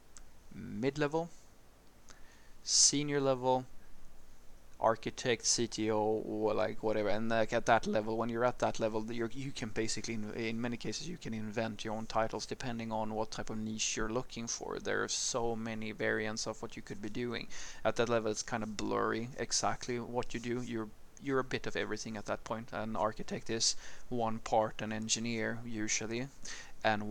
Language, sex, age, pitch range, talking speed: English, male, 20-39, 110-120 Hz, 180 wpm